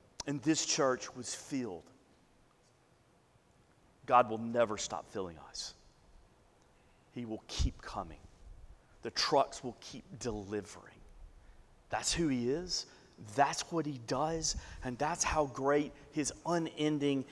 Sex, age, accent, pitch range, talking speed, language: male, 40-59, American, 125-160 Hz, 120 wpm, English